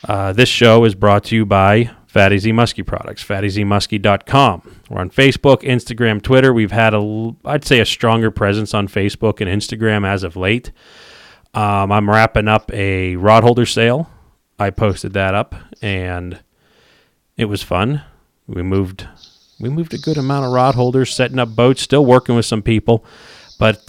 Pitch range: 100-120 Hz